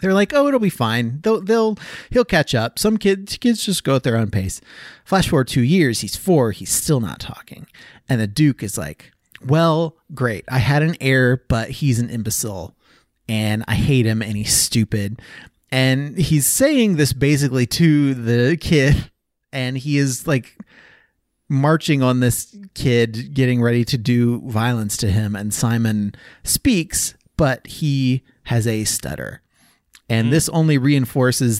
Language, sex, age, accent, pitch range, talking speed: English, male, 30-49, American, 115-155 Hz, 165 wpm